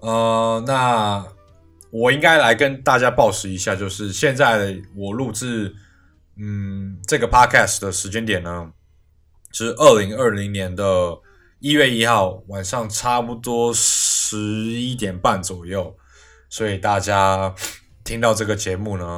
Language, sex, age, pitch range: Chinese, male, 20-39, 90-110 Hz